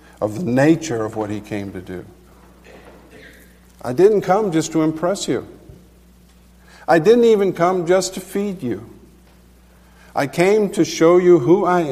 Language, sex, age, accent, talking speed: English, male, 50-69, American, 155 wpm